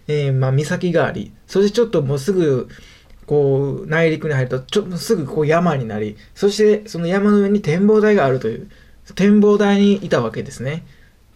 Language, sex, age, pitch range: Japanese, male, 20-39, 145-195 Hz